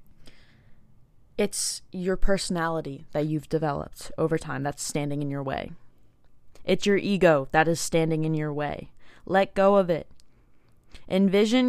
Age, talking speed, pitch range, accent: 20-39, 140 wpm, 130-180 Hz, American